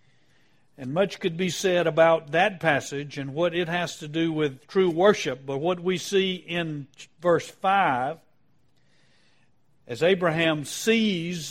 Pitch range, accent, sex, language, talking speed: 145-185 Hz, American, male, English, 140 wpm